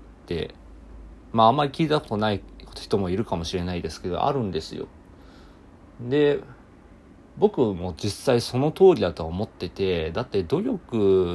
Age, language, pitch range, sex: 40-59, Japanese, 90-130 Hz, male